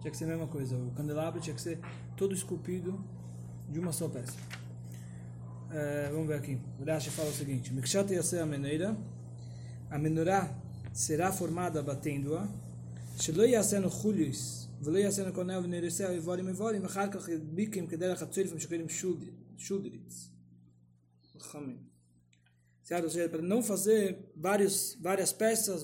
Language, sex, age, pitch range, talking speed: Portuguese, male, 20-39, 125-205 Hz, 90 wpm